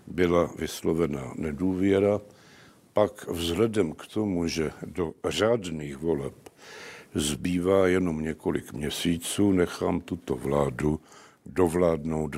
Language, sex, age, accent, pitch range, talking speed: Czech, male, 70-89, native, 80-105 Hz, 90 wpm